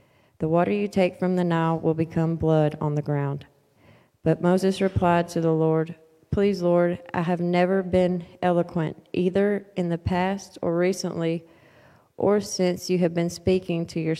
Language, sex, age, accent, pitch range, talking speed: English, female, 30-49, American, 160-185 Hz, 170 wpm